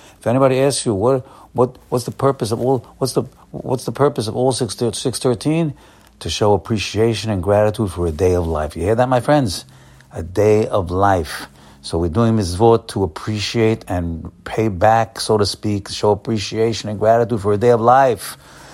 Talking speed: 195 wpm